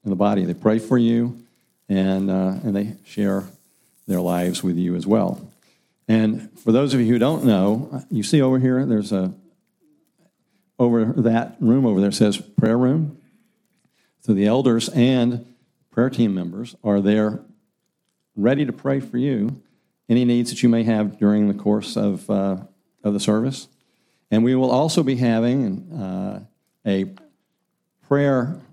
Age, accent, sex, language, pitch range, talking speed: 50-69, American, male, English, 100-135 Hz, 160 wpm